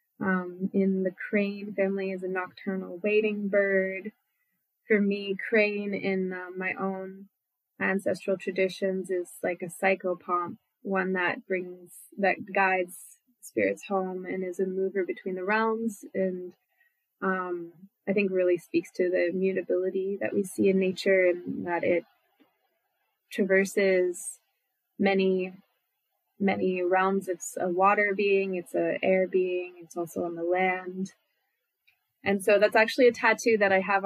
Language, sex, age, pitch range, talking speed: English, female, 20-39, 185-205 Hz, 140 wpm